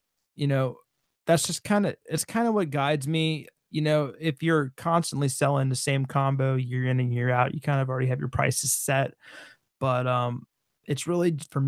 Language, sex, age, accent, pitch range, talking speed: English, male, 20-39, American, 130-150 Hz, 200 wpm